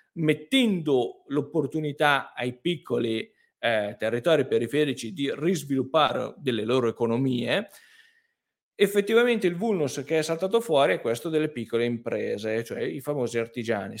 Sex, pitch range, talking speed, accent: male, 120-165 Hz, 120 wpm, native